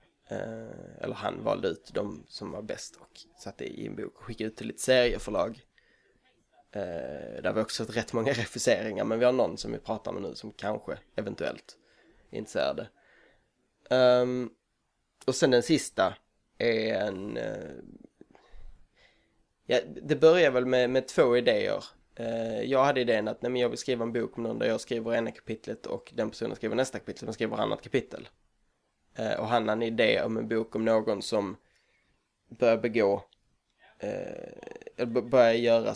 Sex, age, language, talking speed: male, 20-39, Swedish, 170 wpm